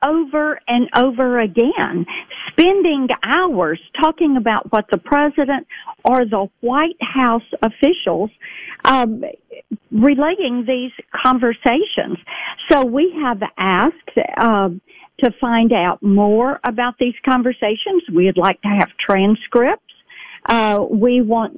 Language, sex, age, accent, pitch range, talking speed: English, female, 50-69, American, 210-265 Hz, 115 wpm